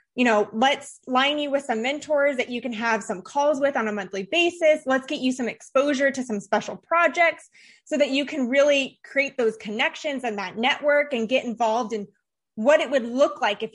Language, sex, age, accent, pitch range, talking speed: English, female, 20-39, American, 235-305 Hz, 215 wpm